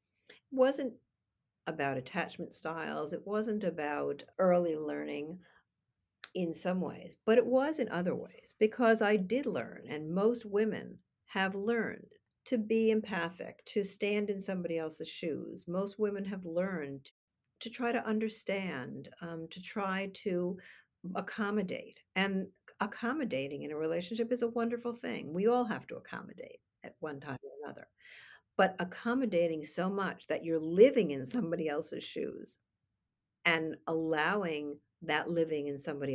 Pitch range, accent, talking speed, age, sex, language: 155-220 Hz, American, 140 wpm, 50-69, female, English